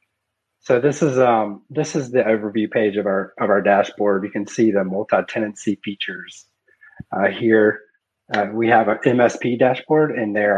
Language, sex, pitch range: English, male, 100-115 Hz